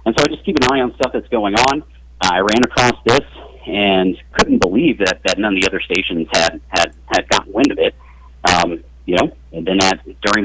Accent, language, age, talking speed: American, English, 40-59, 230 wpm